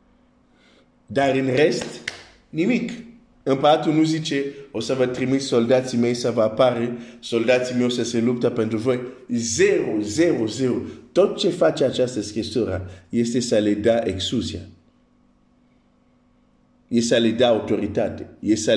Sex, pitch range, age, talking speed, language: male, 115-155 Hz, 50-69, 140 wpm, Romanian